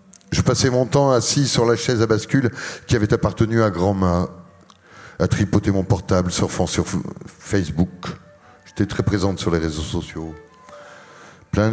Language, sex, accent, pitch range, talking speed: French, male, French, 90-110 Hz, 155 wpm